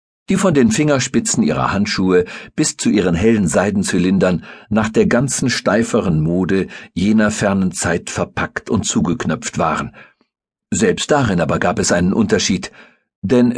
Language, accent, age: German, German, 60-79